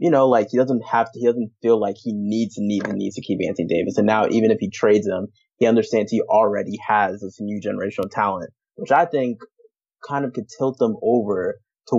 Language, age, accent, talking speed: English, 20-39, American, 225 wpm